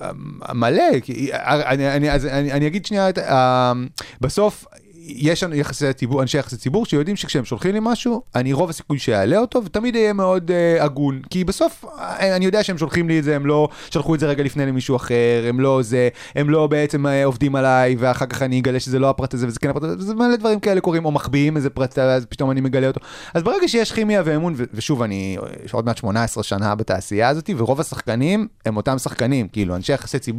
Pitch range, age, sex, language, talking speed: 120-155 Hz, 30-49, male, Hebrew, 195 wpm